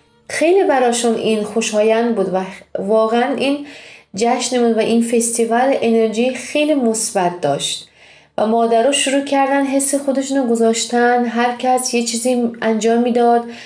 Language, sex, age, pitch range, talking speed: Persian, female, 30-49, 200-240 Hz, 135 wpm